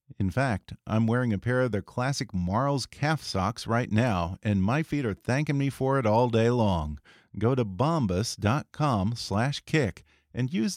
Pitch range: 105-140 Hz